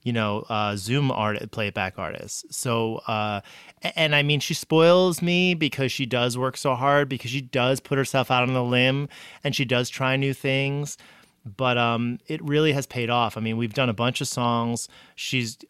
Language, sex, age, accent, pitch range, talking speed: English, male, 30-49, American, 115-140 Hz, 205 wpm